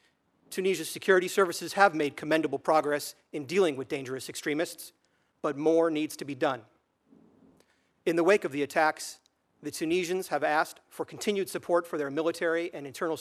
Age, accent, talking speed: 40-59, American, 165 wpm